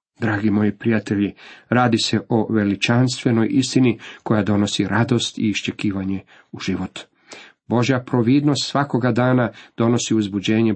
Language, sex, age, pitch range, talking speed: Croatian, male, 40-59, 105-120 Hz, 115 wpm